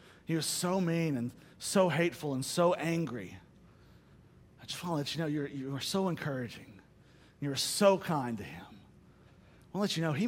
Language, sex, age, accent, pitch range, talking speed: English, male, 40-59, American, 150-205 Hz, 205 wpm